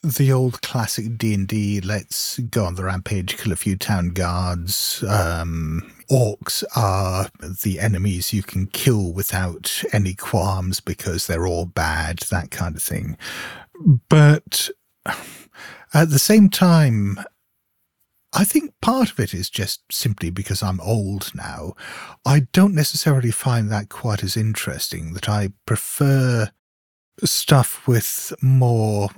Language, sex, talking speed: English, male, 130 wpm